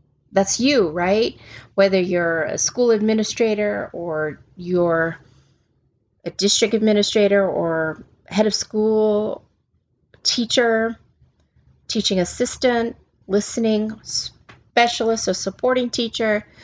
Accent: American